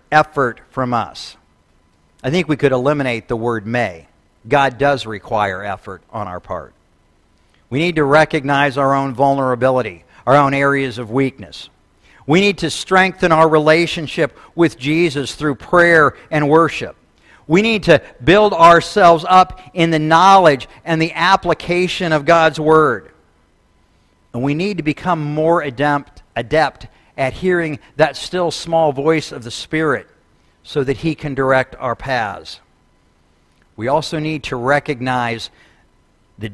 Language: English